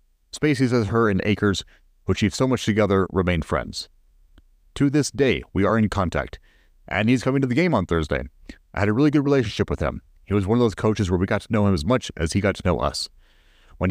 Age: 30-49